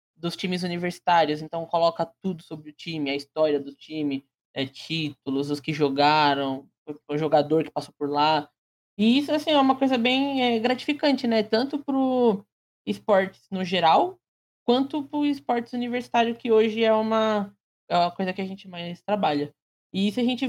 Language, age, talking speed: Portuguese, 20-39, 165 wpm